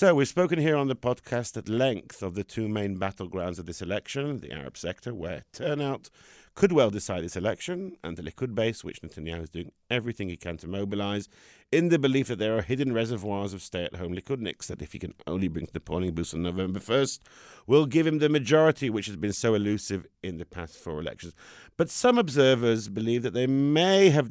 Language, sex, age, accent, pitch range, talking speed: English, male, 50-69, British, 95-135 Hz, 215 wpm